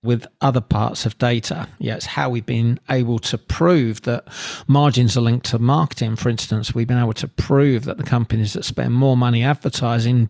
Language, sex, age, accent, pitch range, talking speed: English, male, 40-59, British, 120-140 Hz, 200 wpm